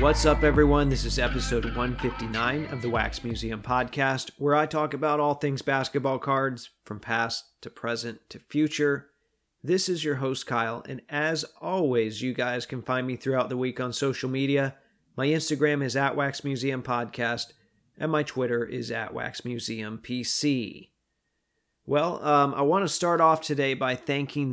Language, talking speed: English, 160 wpm